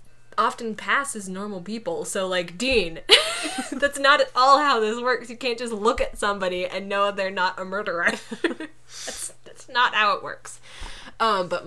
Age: 10-29